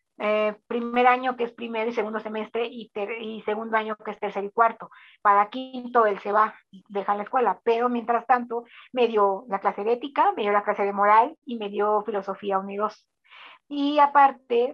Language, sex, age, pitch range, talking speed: Spanish, female, 40-59, 205-240 Hz, 210 wpm